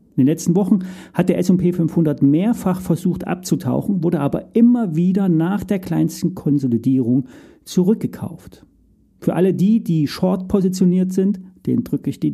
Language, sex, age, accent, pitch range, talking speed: German, male, 40-59, German, 140-185 Hz, 150 wpm